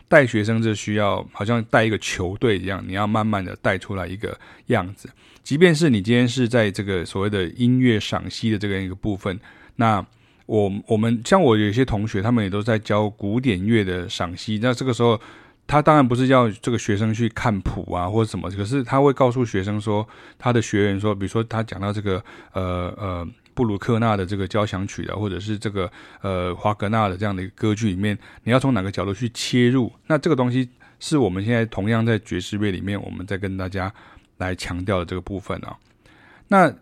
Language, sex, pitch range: Chinese, male, 95-120 Hz